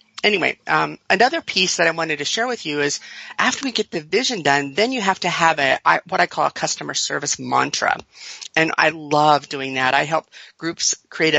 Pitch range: 145-180 Hz